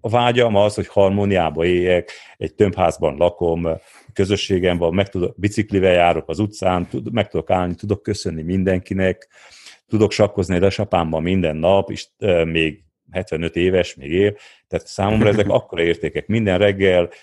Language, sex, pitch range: Hungarian, male, 90-105 Hz